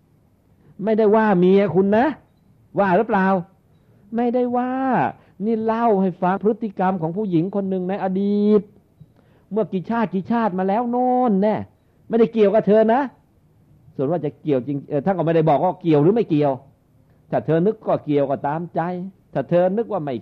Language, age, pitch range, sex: Thai, 60-79, 110-180 Hz, male